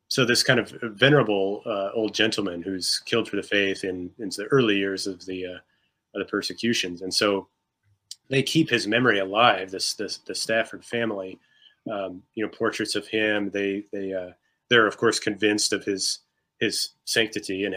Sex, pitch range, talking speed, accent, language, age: male, 95-110 Hz, 185 wpm, American, English, 30-49